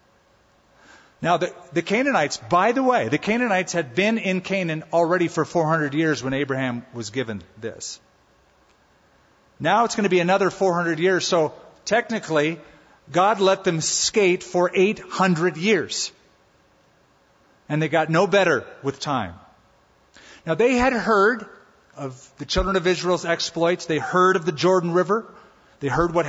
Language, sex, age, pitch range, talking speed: English, male, 40-59, 165-195 Hz, 150 wpm